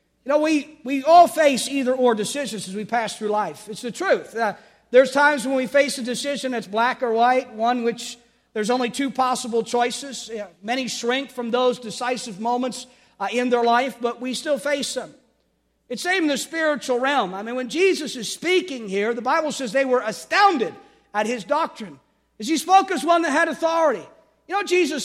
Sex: male